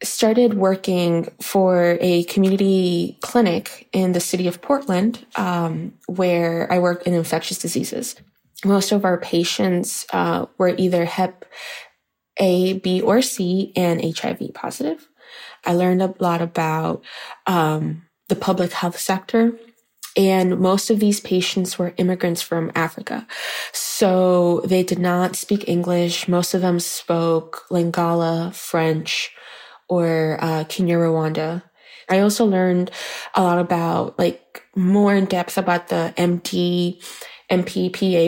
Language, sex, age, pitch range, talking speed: English, female, 20-39, 175-200 Hz, 130 wpm